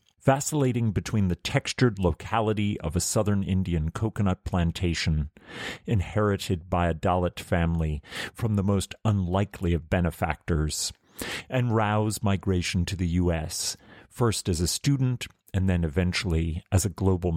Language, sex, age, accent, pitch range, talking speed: English, male, 40-59, American, 85-105 Hz, 130 wpm